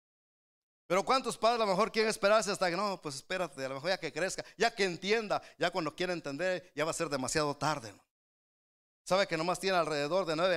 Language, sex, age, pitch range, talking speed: Spanish, male, 50-69, 145-185 Hz, 225 wpm